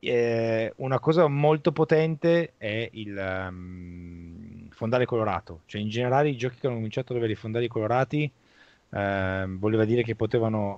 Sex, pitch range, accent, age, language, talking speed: male, 95-120 Hz, native, 20-39, Italian, 155 wpm